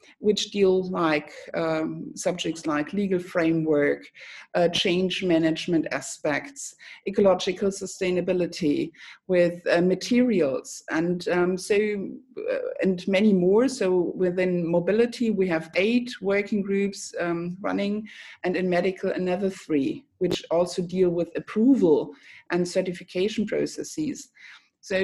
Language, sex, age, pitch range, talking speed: English, female, 60-79, 175-210 Hz, 115 wpm